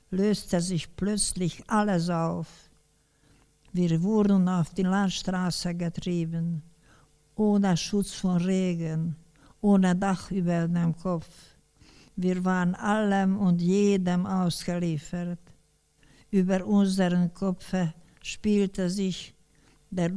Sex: female